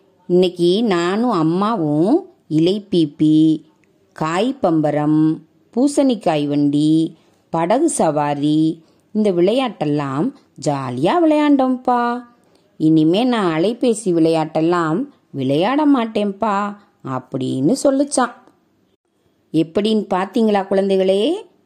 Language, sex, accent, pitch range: Tamil, female, native, 155-235 Hz